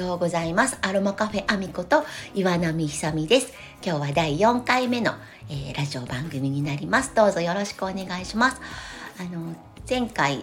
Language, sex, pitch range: Japanese, female, 155-215 Hz